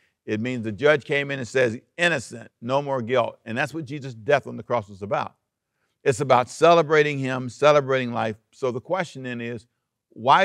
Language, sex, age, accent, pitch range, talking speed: English, male, 50-69, American, 110-145 Hz, 195 wpm